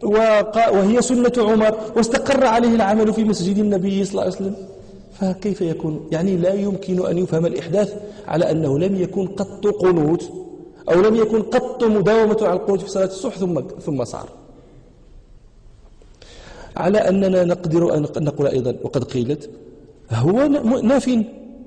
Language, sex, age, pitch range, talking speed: Danish, male, 40-59, 175-255 Hz, 140 wpm